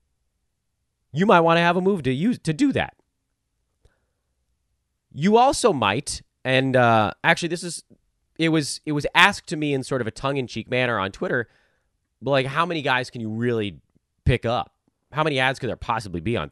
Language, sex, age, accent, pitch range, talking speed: English, male, 30-49, American, 105-165 Hz, 190 wpm